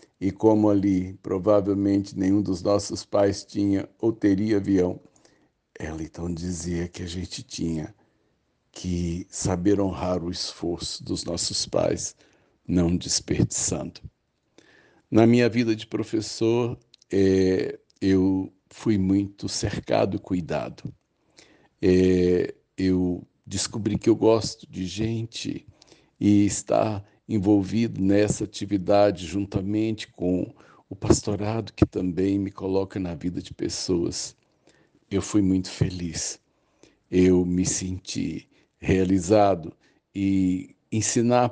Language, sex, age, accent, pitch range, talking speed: Portuguese, male, 60-79, Brazilian, 90-105 Hz, 110 wpm